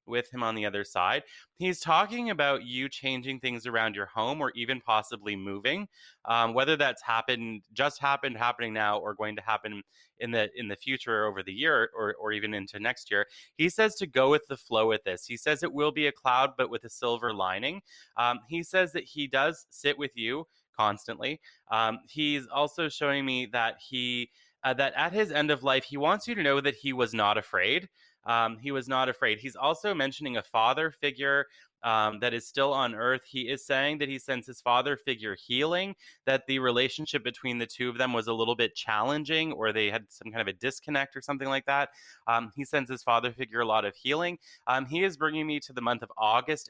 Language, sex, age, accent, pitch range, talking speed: English, male, 20-39, American, 115-145 Hz, 220 wpm